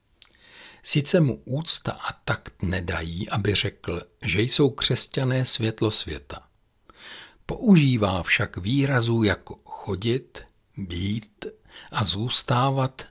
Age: 60-79